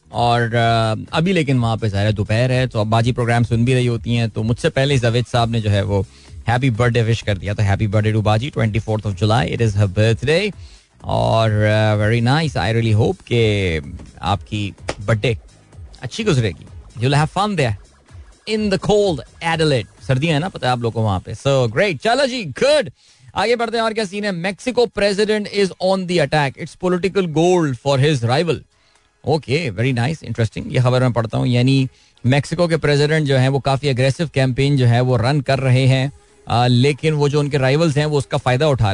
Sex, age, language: male, 20-39, Hindi